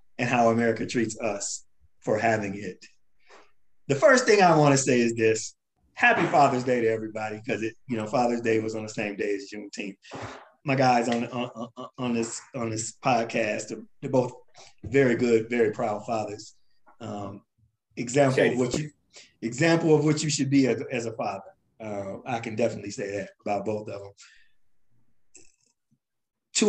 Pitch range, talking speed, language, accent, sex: 110-150 Hz, 175 wpm, English, American, male